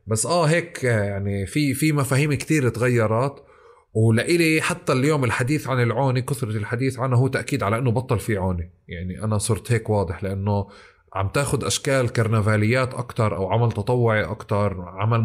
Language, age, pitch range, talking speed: Arabic, 30-49, 100-130 Hz, 160 wpm